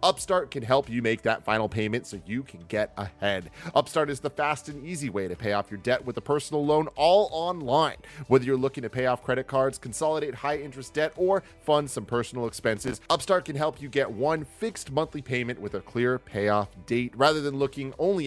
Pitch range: 110-140 Hz